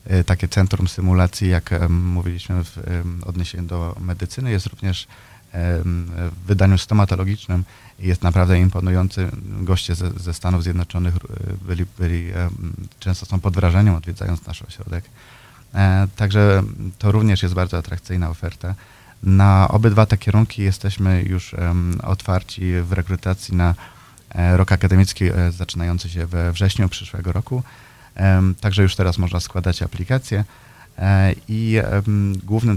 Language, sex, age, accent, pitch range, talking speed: Polish, male, 30-49, native, 90-100 Hz, 115 wpm